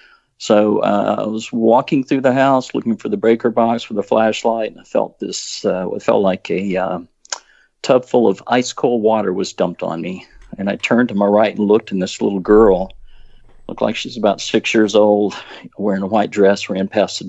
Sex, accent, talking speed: male, American, 215 wpm